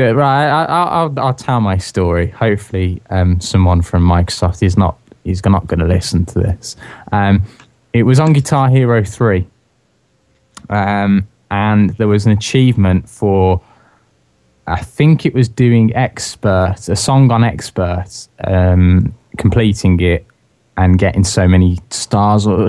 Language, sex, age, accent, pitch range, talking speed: English, male, 20-39, British, 95-120 Hz, 145 wpm